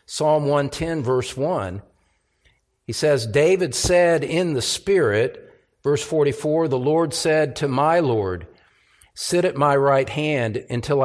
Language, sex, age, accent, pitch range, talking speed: English, male, 50-69, American, 135-190 Hz, 135 wpm